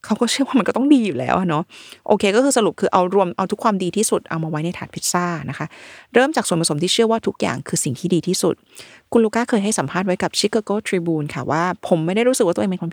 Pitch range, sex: 175-220 Hz, female